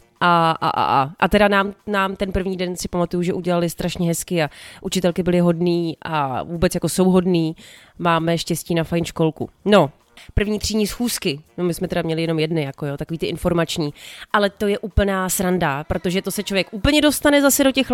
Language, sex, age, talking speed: Czech, female, 30-49, 205 wpm